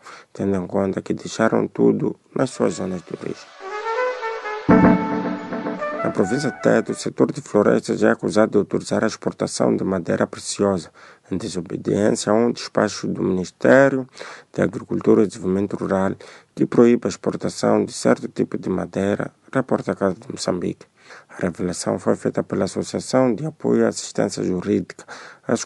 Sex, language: male, Portuguese